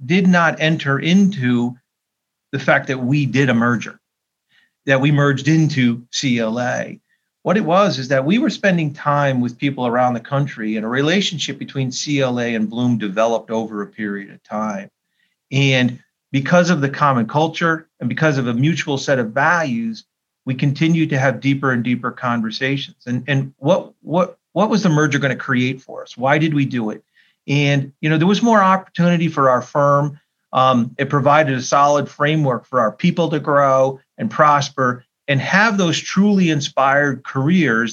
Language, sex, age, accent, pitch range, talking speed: English, male, 40-59, American, 130-160 Hz, 175 wpm